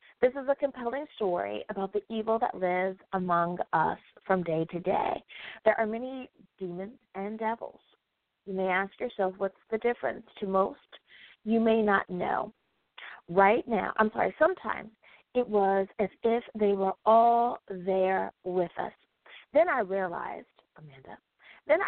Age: 30-49